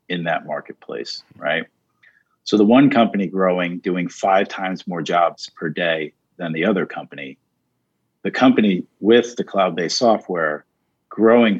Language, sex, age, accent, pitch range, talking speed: English, male, 50-69, American, 90-115 Hz, 140 wpm